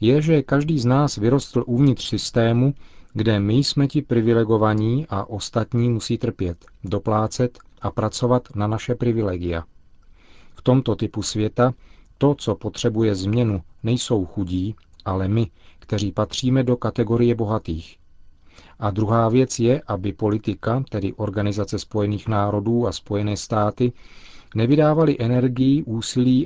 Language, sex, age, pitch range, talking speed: Czech, male, 40-59, 100-125 Hz, 125 wpm